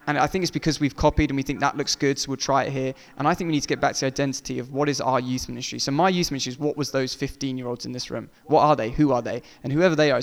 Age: 20-39